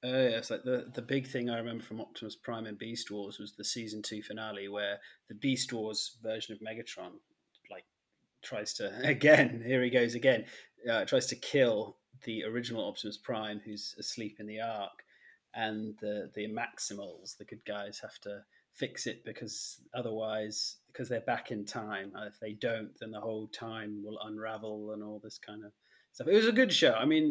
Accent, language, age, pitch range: British, English, 30-49, 105-130 Hz